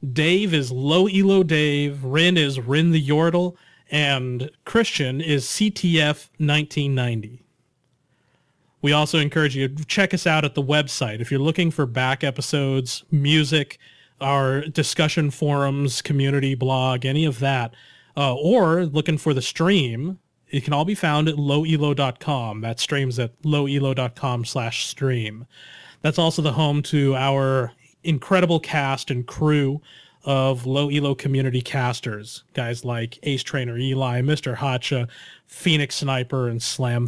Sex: male